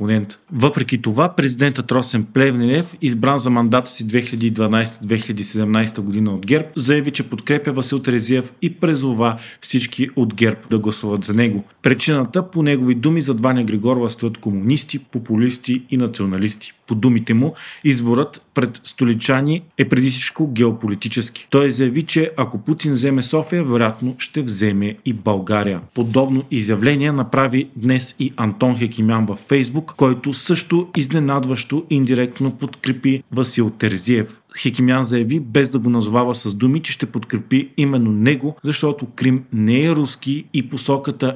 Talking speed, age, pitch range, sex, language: 140 wpm, 40-59, 115-145 Hz, male, Bulgarian